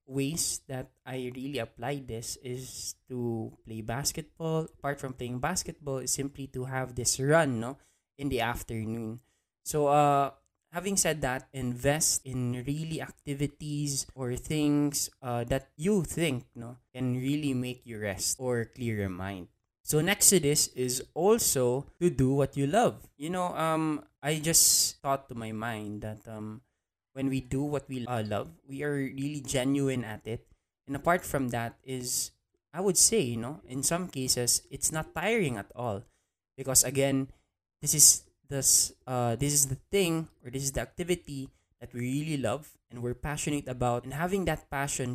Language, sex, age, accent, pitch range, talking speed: English, male, 20-39, Filipino, 120-145 Hz, 170 wpm